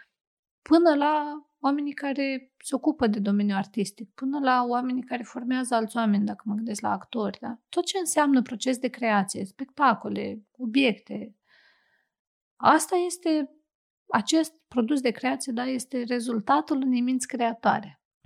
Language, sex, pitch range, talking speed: Romanian, female, 225-285 Hz, 135 wpm